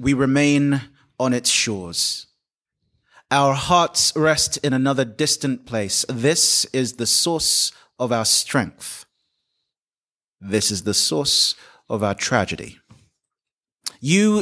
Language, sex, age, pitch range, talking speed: Dutch, male, 30-49, 120-160 Hz, 110 wpm